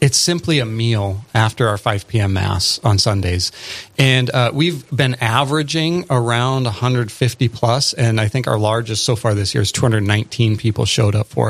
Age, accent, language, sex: 30-49, American, English, male